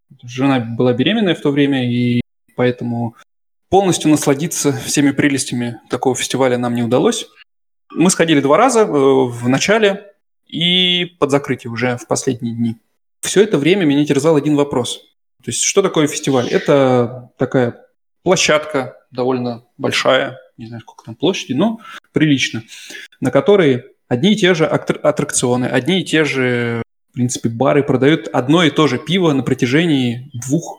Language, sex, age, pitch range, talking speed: Russian, male, 20-39, 125-155 Hz, 150 wpm